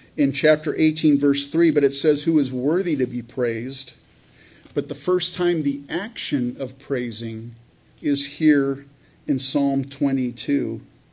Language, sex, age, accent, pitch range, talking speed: English, male, 40-59, American, 125-150 Hz, 145 wpm